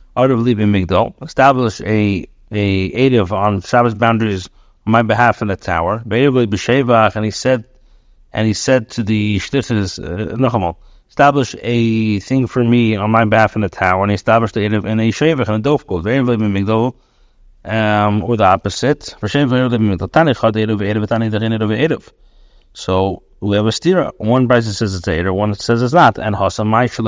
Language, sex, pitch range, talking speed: English, male, 105-125 Hz, 155 wpm